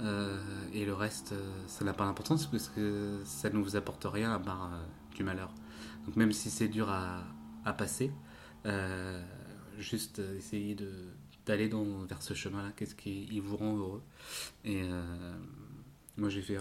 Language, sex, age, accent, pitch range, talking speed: French, male, 20-39, French, 95-105 Hz, 175 wpm